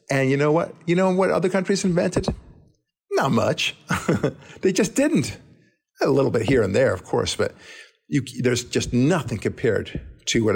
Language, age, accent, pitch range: English, 50-69, American, 105-140 Hz